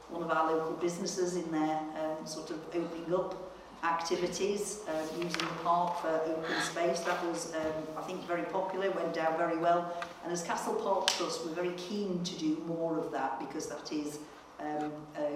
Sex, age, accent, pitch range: female, 50-69, British, 155-180 Hz